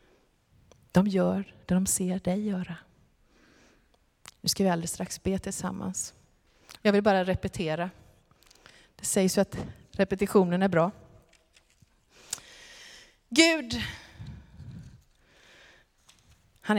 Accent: native